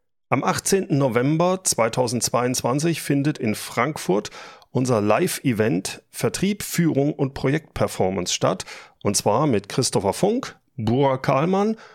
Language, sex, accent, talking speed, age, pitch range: German, male, German, 105 wpm, 30-49, 110-150 Hz